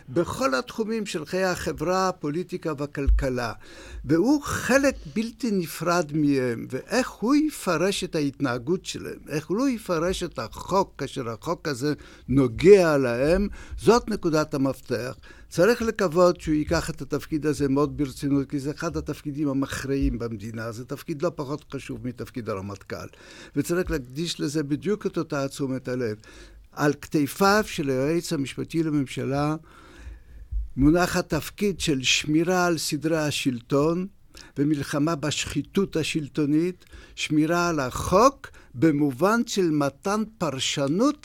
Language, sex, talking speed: Hebrew, male, 120 wpm